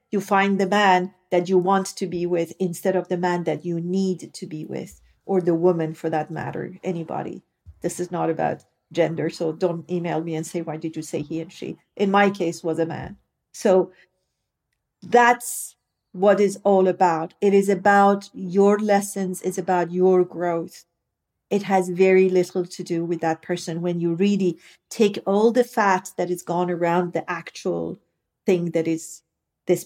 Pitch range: 175-265 Hz